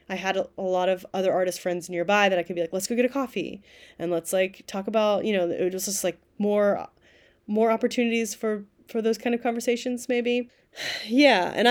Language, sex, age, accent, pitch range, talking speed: English, female, 20-39, American, 175-215 Hz, 215 wpm